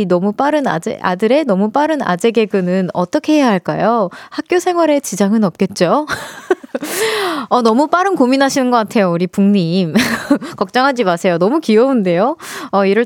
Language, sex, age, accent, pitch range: Korean, female, 20-39, native, 200-275 Hz